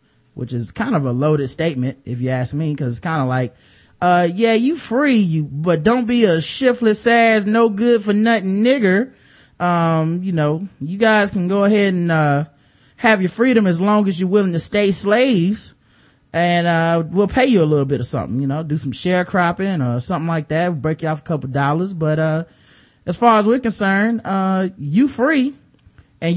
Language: English